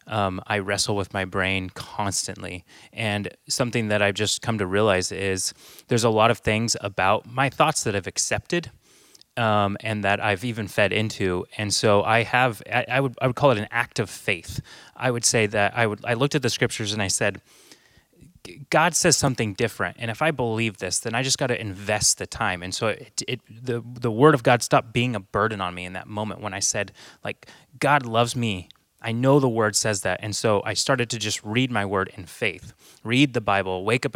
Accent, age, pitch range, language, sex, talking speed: American, 30-49, 100-125 Hz, English, male, 225 wpm